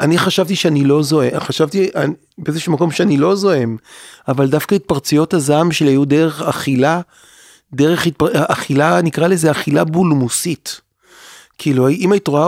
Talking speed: 150 wpm